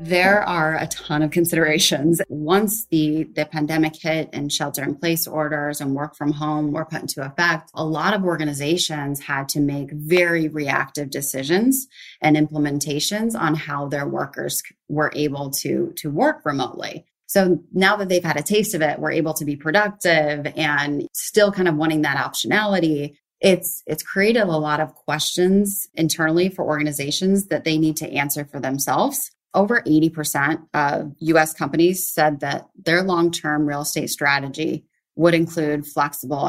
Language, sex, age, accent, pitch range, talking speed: English, female, 30-49, American, 150-175 Hz, 165 wpm